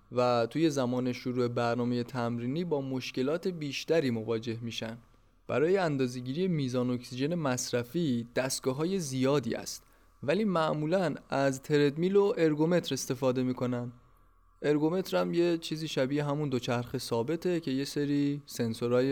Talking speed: 120 wpm